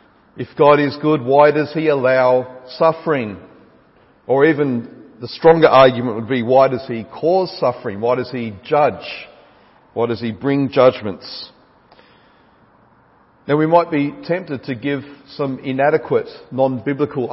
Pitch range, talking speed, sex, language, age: 120-150 Hz, 140 wpm, male, English, 40-59